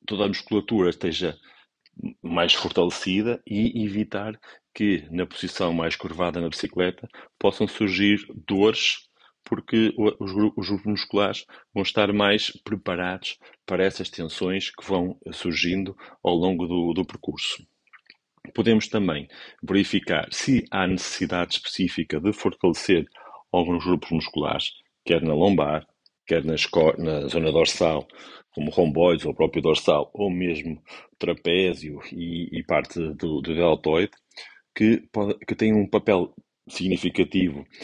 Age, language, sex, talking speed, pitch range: 40-59, Portuguese, male, 125 wpm, 90-105 Hz